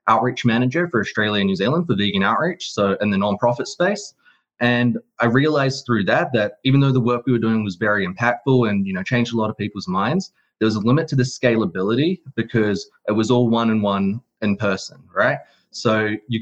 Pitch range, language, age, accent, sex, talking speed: 105-130 Hz, English, 20-39, Australian, male, 210 wpm